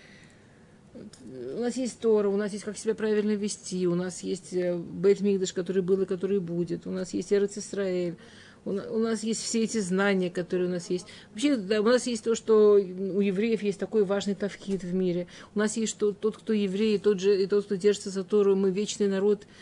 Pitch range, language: 180-215 Hz, Russian